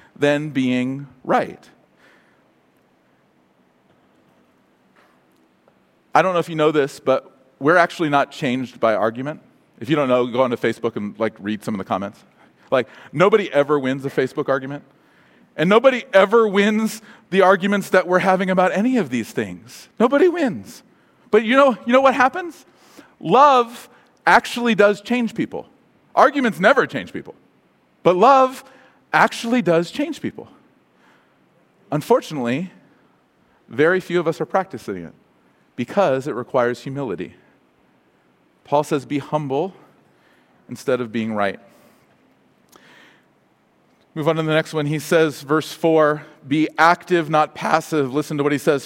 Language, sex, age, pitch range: English, male, 40-59, 145-195 Hz